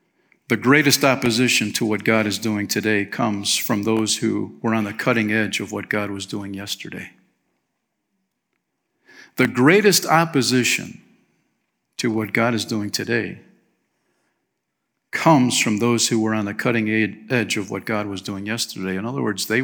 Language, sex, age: English, male, 50-69